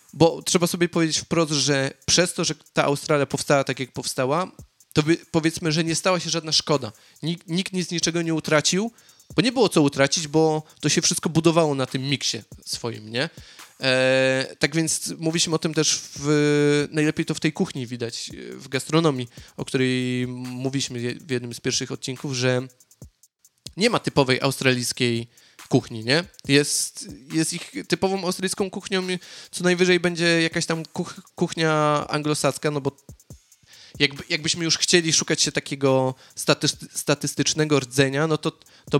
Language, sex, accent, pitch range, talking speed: Polish, male, native, 130-165 Hz, 165 wpm